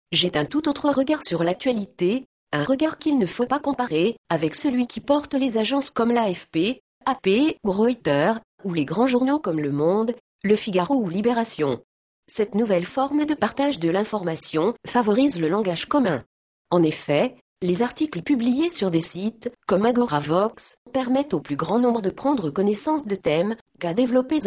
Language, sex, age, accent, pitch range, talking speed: French, female, 40-59, French, 175-265 Hz, 170 wpm